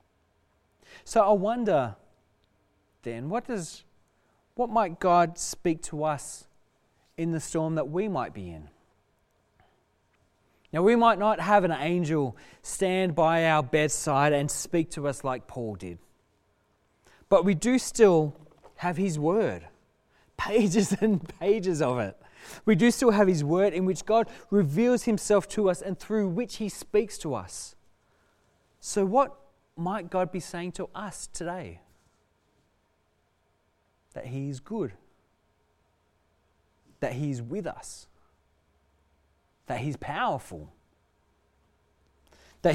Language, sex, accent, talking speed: English, male, Australian, 130 wpm